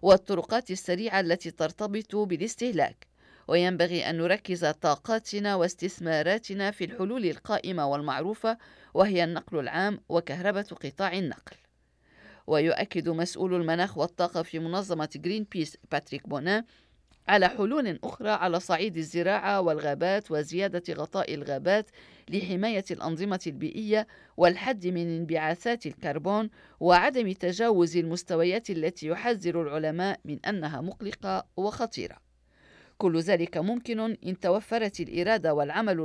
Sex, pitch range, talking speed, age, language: female, 165-205 Hz, 105 wpm, 50-69, Arabic